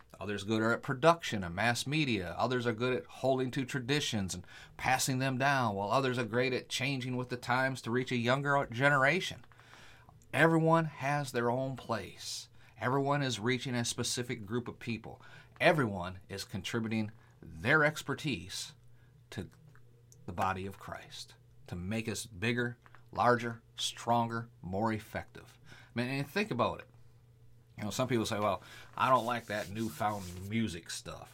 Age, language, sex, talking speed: 30-49, English, male, 155 wpm